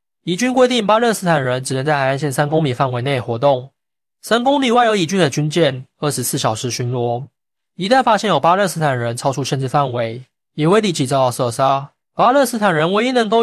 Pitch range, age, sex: 130-175 Hz, 20-39, male